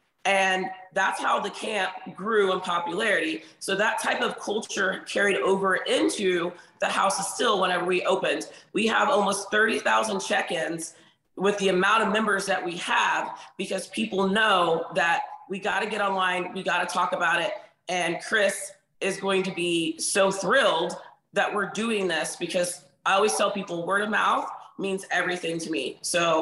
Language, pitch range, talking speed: English, 180-205 Hz, 165 wpm